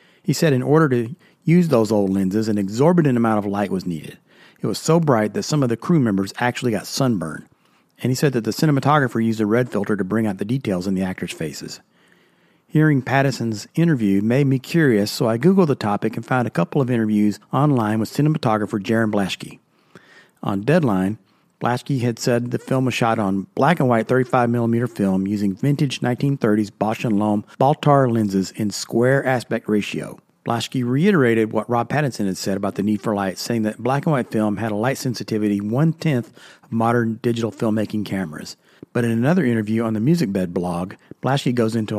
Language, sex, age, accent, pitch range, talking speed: English, male, 40-59, American, 105-135 Hz, 190 wpm